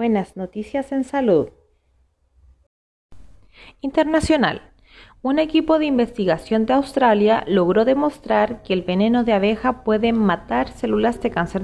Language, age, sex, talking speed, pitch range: Spanish, 30-49, female, 120 wpm, 180-245 Hz